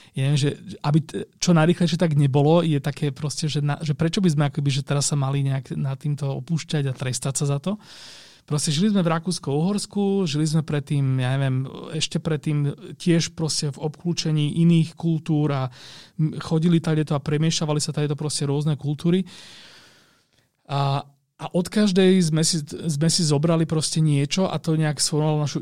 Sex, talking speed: male, 180 wpm